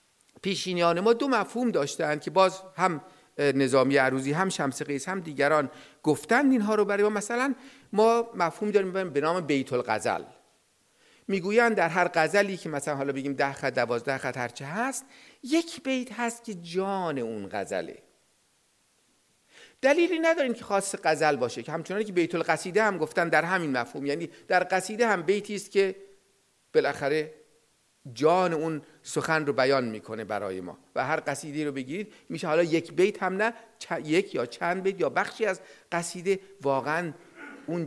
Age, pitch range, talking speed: 50-69, 145-220 Hz, 160 wpm